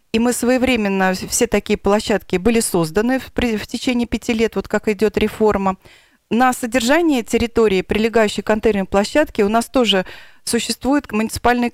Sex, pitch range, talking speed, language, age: female, 200-240 Hz, 150 wpm, Russian, 30-49